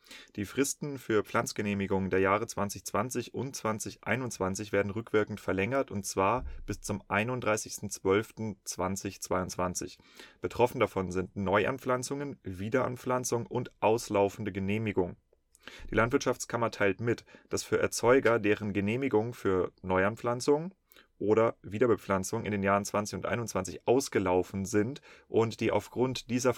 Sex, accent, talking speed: male, German, 115 wpm